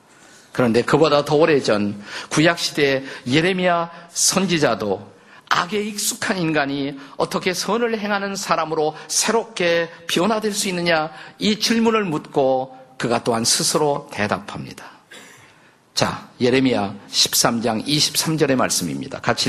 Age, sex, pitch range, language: 50-69, male, 135-185 Hz, Korean